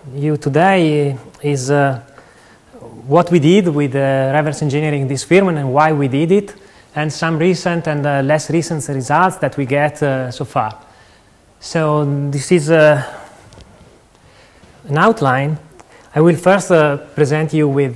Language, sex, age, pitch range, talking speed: English, male, 30-49, 135-170 Hz, 155 wpm